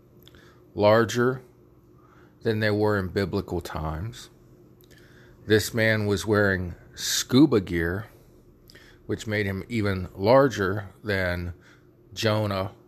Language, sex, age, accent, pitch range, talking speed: English, male, 40-59, American, 85-110 Hz, 95 wpm